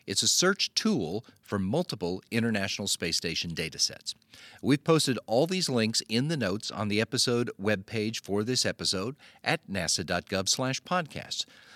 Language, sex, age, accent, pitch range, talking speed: English, male, 50-69, American, 105-140 Hz, 145 wpm